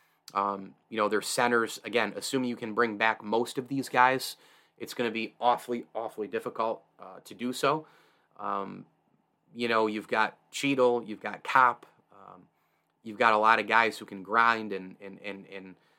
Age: 30-49